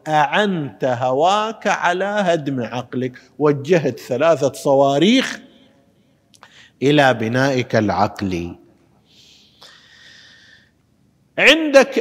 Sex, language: male, Arabic